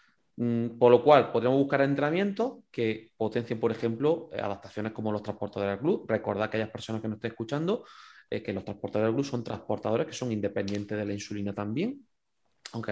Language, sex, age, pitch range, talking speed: Spanish, male, 30-49, 115-150 Hz, 180 wpm